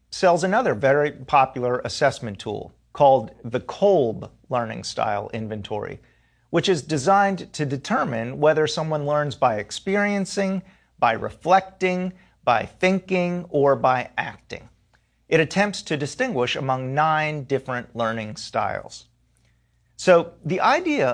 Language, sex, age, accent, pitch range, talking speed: English, male, 40-59, American, 120-185 Hz, 115 wpm